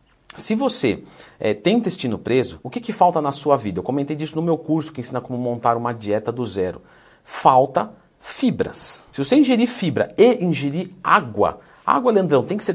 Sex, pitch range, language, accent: male, 120-185 Hz, Portuguese, Brazilian